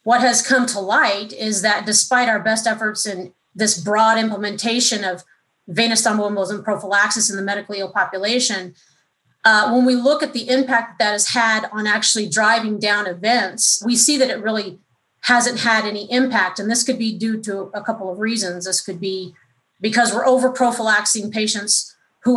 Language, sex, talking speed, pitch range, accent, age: English, female, 175 wpm, 205-240 Hz, American, 30-49